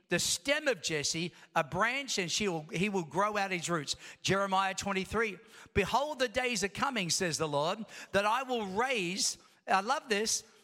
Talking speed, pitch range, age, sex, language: 170 wpm, 175-230 Hz, 50-69, male, English